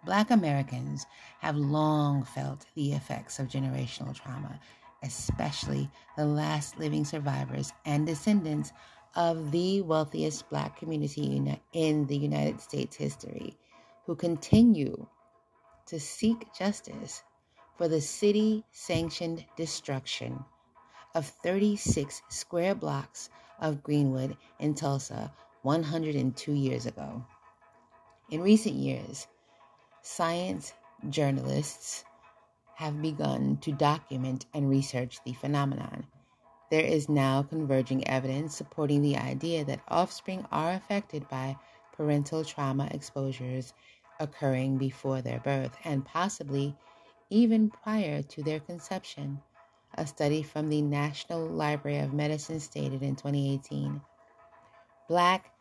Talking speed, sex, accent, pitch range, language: 110 wpm, female, American, 135-165 Hz, English